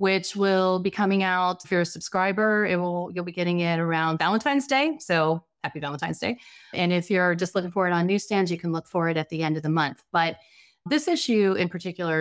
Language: English